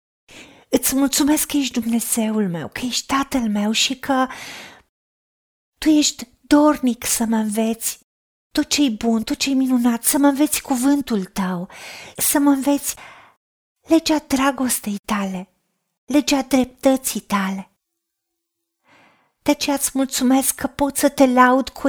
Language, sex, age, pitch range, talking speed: Romanian, female, 30-49, 215-280 Hz, 130 wpm